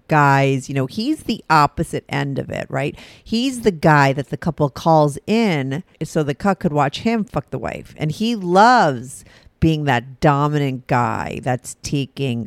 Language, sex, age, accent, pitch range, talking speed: English, female, 40-59, American, 135-185 Hz, 175 wpm